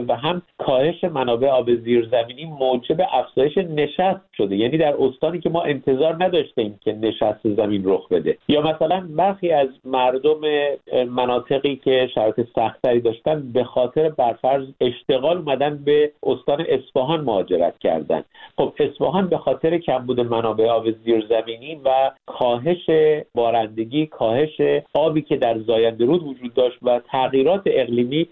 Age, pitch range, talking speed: 50-69, 120-160 Hz, 140 wpm